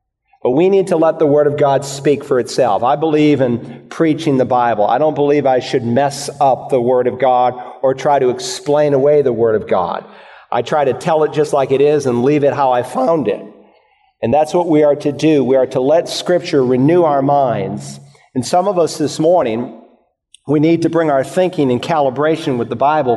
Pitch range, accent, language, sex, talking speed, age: 130-155 Hz, American, English, male, 225 wpm, 50-69